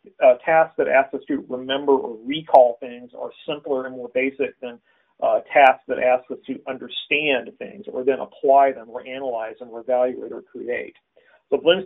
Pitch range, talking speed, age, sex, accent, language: 125-160 Hz, 185 wpm, 40-59, male, American, English